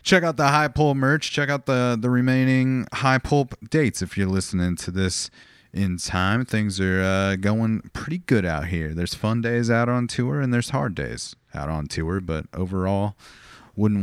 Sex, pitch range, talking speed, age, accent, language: male, 85-110 Hz, 195 wpm, 30-49, American, English